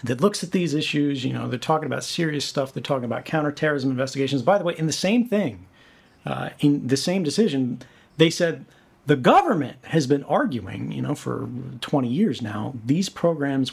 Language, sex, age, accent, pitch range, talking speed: English, male, 40-59, American, 135-170 Hz, 190 wpm